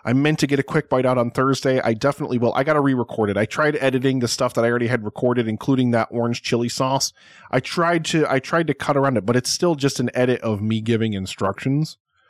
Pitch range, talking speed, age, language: 110-150 Hz, 250 wpm, 20-39, English